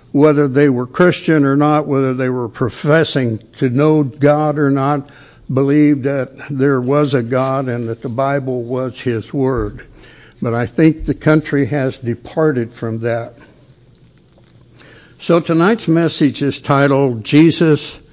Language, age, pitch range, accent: English, 60-79, 125-150 Hz, American